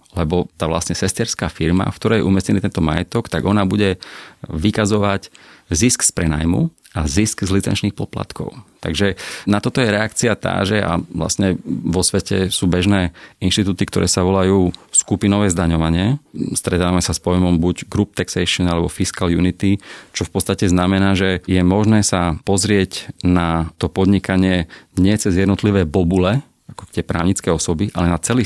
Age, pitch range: 40-59, 85-100 Hz